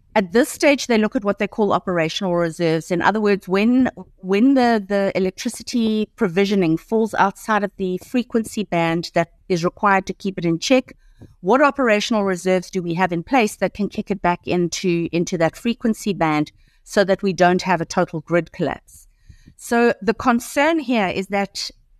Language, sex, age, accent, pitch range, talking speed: English, female, 50-69, South African, 170-215 Hz, 185 wpm